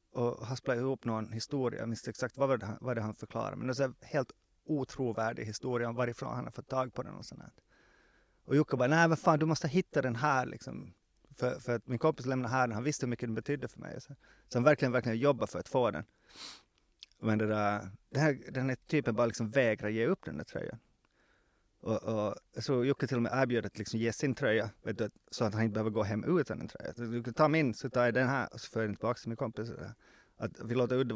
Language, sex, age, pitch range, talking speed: English, male, 30-49, 115-150 Hz, 250 wpm